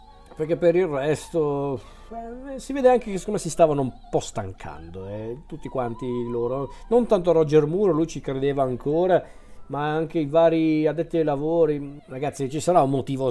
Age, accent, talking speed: 40-59, native, 175 wpm